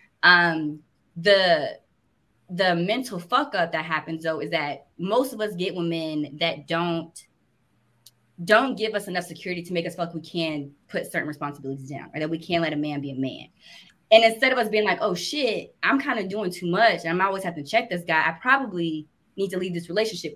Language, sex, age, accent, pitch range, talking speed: English, female, 20-39, American, 160-210 Hz, 215 wpm